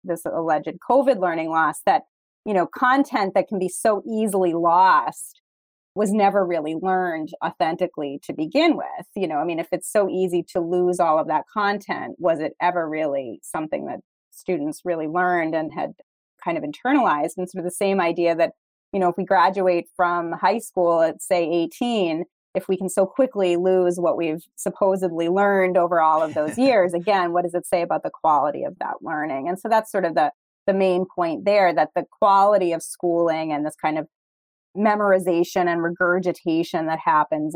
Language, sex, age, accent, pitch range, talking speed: English, female, 30-49, American, 165-200 Hz, 190 wpm